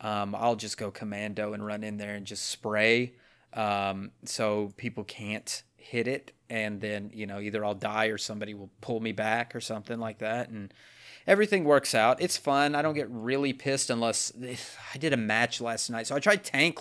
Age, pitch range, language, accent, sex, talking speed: 30-49, 115-155 Hz, English, American, male, 200 wpm